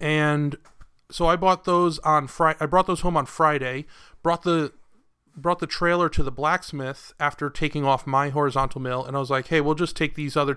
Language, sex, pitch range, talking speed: English, male, 135-160 Hz, 210 wpm